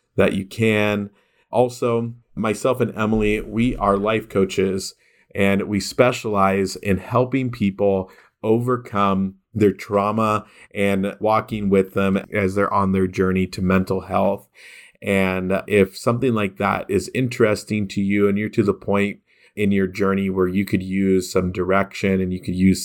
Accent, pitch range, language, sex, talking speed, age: American, 95-110 Hz, English, male, 155 wpm, 40-59